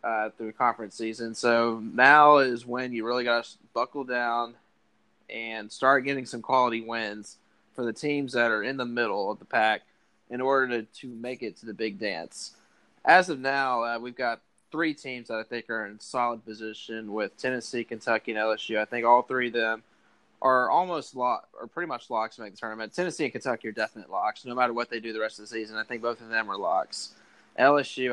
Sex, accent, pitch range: male, American, 115-130 Hz